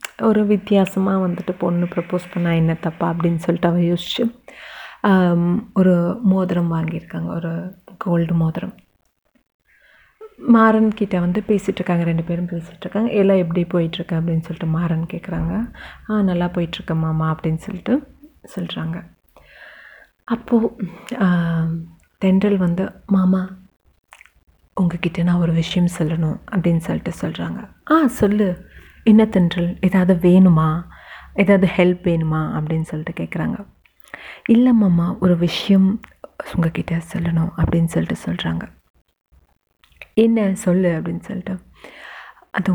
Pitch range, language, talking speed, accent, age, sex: 170-195 Hz, Tamil, 105 wpm, native, 30-49, female